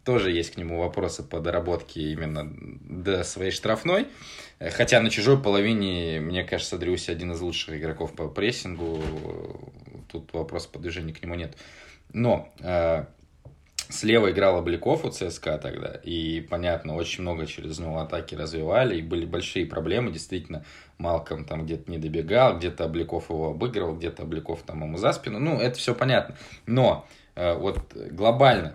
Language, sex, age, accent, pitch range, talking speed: Russian, male, 20-39, native, 80-95 Hz, 155 wpm